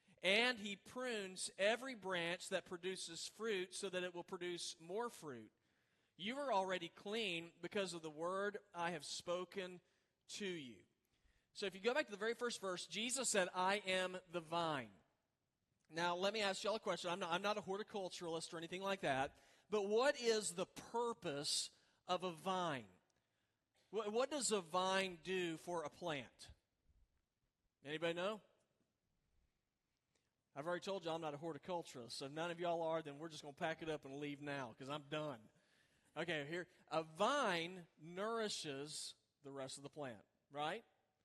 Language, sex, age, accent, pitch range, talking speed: English, male, 40-59, American, 165-205 Hz, 170 wpm